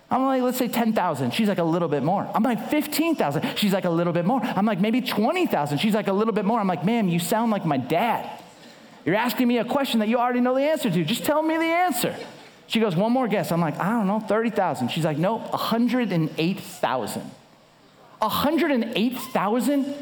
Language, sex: English, male